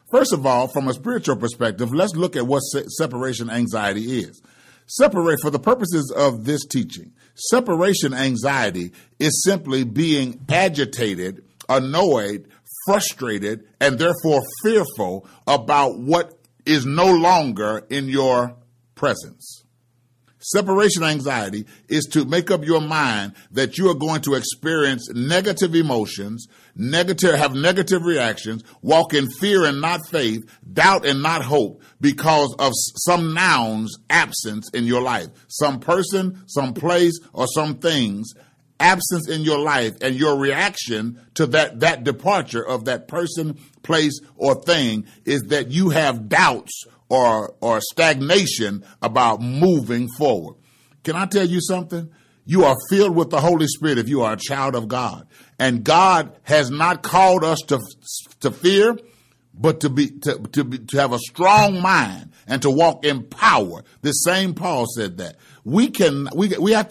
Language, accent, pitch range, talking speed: English, American, 125-170 Hz, 150 wpm